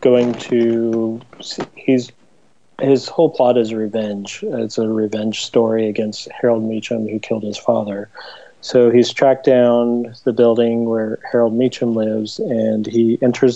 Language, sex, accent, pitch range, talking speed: English, male, American, 110-125 Hz, 140 wpm